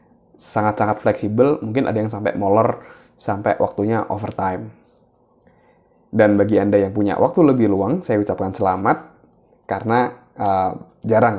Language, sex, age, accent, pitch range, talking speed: Indonesian, male, 20-39, native, 100-125 Hz, 130 wpm